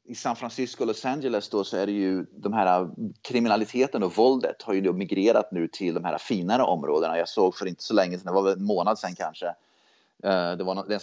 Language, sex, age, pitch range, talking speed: Swedish, male, 30-49, 90-115 Hz, 230 wpm